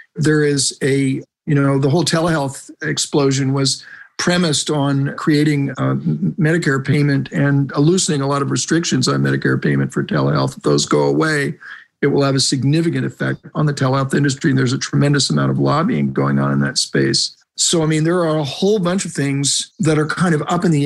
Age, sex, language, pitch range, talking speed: 50-69, male, English, 135-155 Hz, 200 wpm